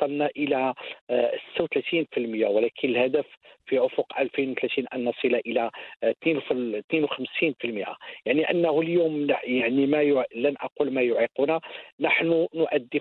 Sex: male